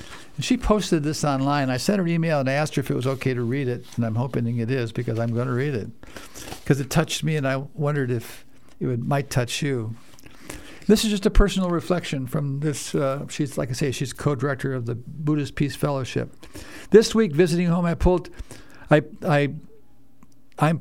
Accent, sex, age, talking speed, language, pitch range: American, male, 60-79, 200 wpm, English, 130-160 Hz